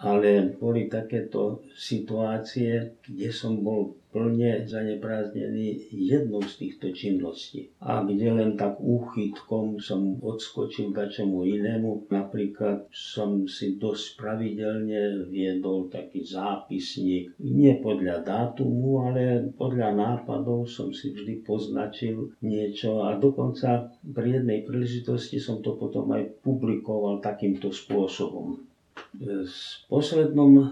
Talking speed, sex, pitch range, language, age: 105 wpm, male, 100-125 Hz, Slovak, 50-69